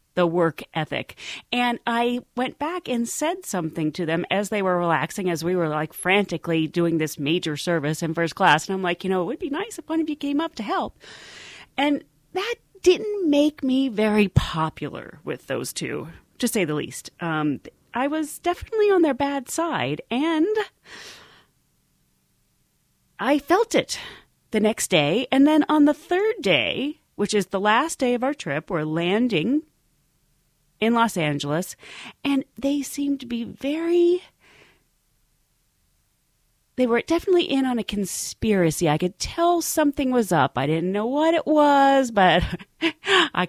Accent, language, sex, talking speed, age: American, English, female, 165 wpm, 30-49